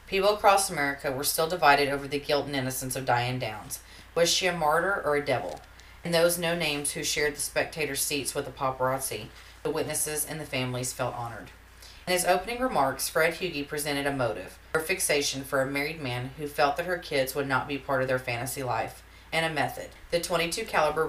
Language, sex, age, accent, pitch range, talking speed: English, female, 40-59, American, 130-165 Hz, 210 wpm